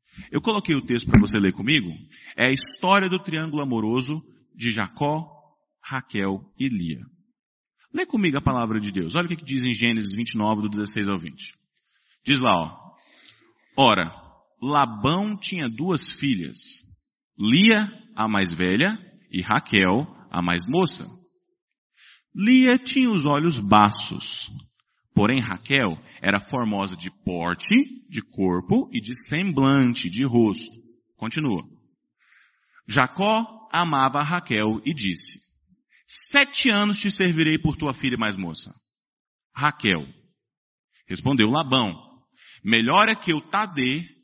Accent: Brazilian